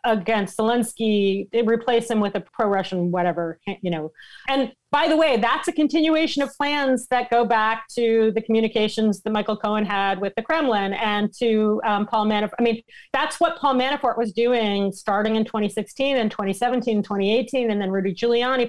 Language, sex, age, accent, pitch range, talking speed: English, female, 40-59, American, 205-255 Hz, 175 wpm